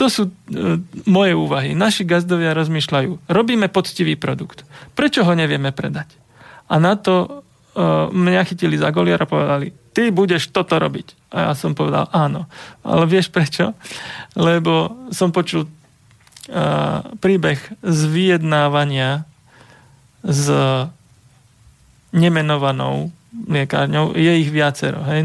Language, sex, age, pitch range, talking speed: Slovak, male, 30-49, 140-180 Hz, 120 wpm